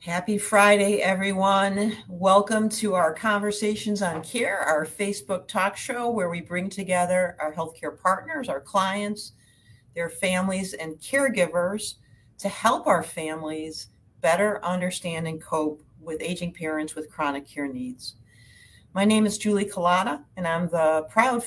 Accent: American